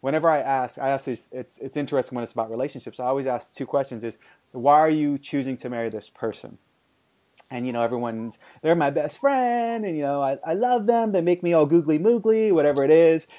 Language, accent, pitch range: English, American, 115-150 Hz